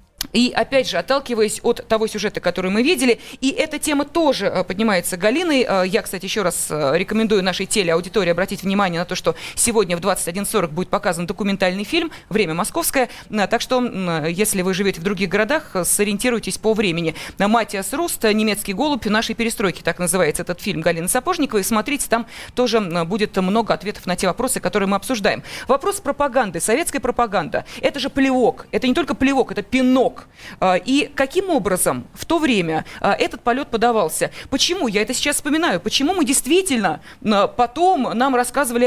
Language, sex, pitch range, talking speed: Russian, female, 195-275 Hz, 160 wpm